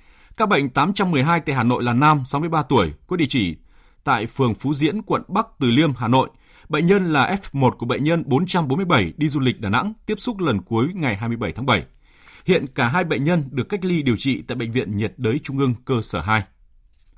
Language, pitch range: Vietnamese, 120-155 Hz